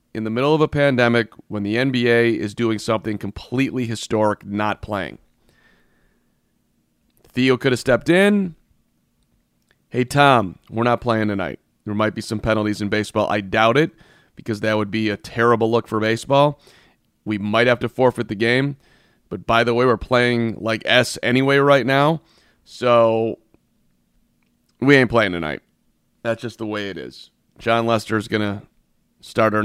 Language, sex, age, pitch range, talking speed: English, male, 30-49, 105-130 Hz, 165 wpm